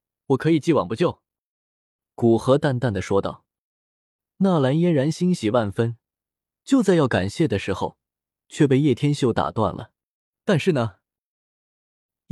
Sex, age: male, 20-39